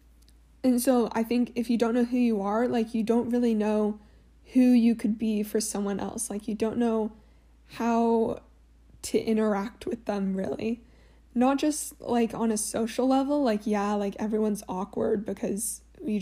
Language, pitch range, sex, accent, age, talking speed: English, 210-240 Hz, female, American, 10-29, 175 wpm